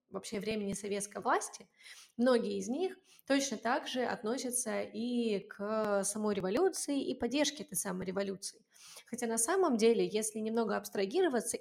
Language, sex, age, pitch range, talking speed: Russian, female, 20-39, 200-250 Hz, 140 wpm